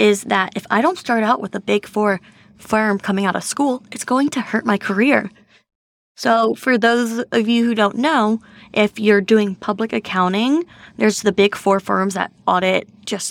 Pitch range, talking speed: 200-275 Hz, 195 wpm